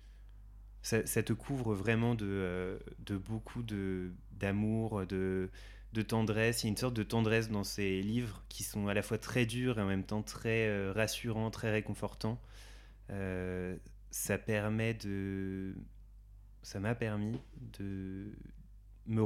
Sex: male